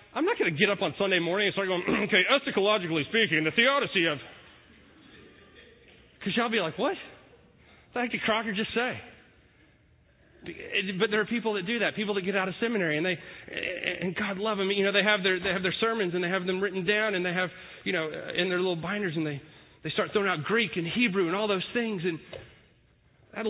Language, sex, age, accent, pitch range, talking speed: English, male, 30-49, American, 170-210 Hz, 225 wpm